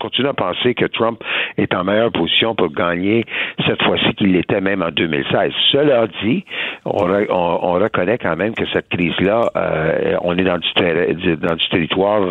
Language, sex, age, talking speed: French, male, 60-79, 180 wpm